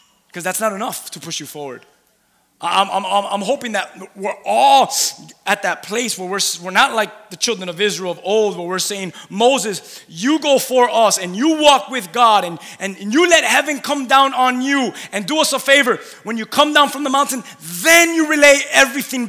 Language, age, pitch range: English, 20-39, 190-270 Hz